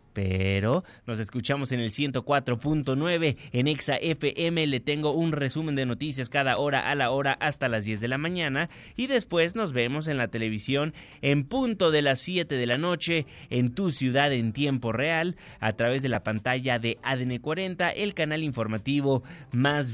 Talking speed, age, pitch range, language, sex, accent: 175 wpm, 30-49, 120-150 Hz, Spanish, male, Mexican